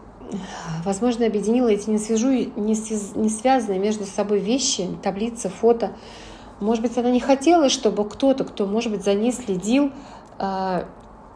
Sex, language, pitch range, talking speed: female, Russian, 185-230 Hz, 130 wpm